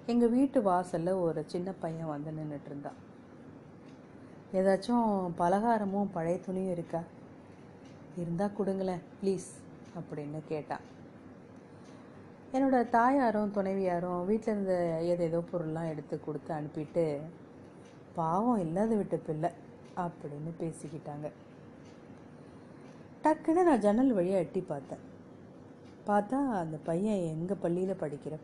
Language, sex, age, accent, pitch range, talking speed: Tamil, female, 30-49, native, 165-220 Hz, 95 wpm